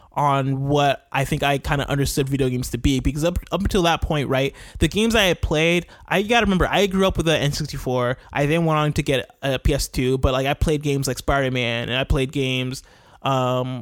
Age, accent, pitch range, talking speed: 20-39, American, 125-150 Hz, 235 wpm